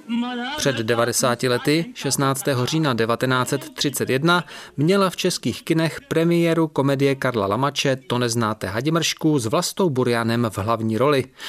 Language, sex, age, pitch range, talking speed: Czech, male, 30-49, 115-165 Hz, 120 wpm